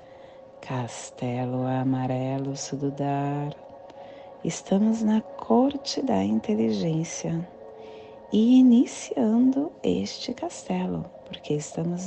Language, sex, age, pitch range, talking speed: Portuguese, female, 30-49, 135-215 Hz, 70 wpm